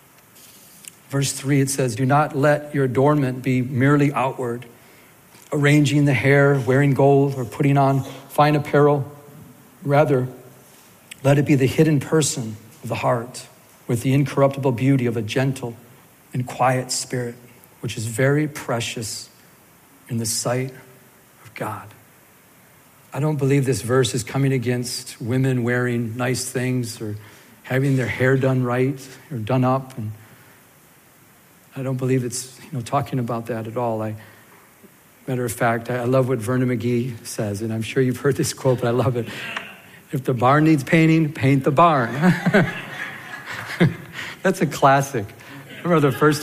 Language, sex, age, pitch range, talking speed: English, male, 40-59, 120-140 Hz, 155 wpm